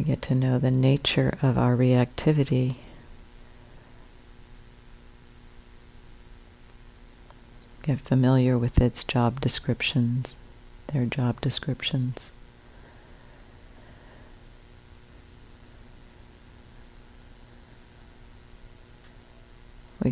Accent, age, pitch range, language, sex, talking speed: American, 50-69, 120-135 Hz, English, female, 55 wpm